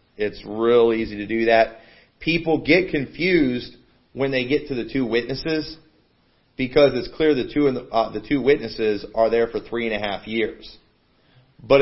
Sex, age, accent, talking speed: male, 40-59, American, 185 wpm